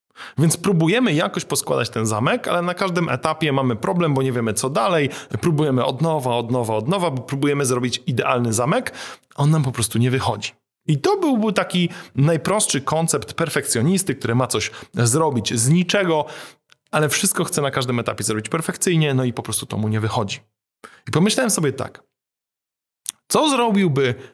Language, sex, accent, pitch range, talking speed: Polish, male, native, 125-165 Hz, 175 wpm